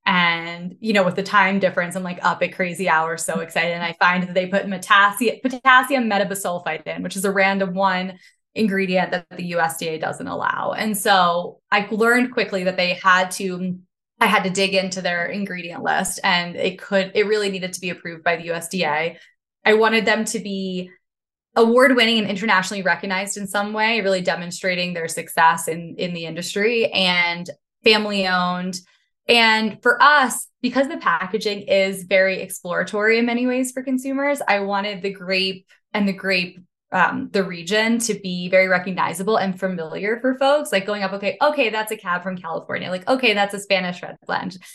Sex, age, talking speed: female, 20-39, 180 wpm